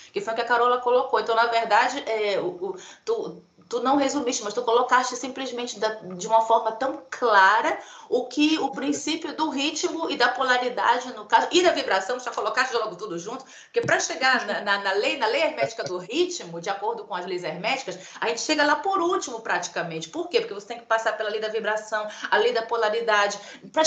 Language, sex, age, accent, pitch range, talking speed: Portuguese, female, 30-49, Brazilian, 210-285 Hz, 220 wpm